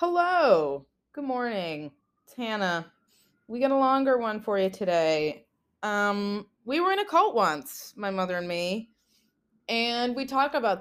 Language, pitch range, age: English, 180-230 Hz, 20-39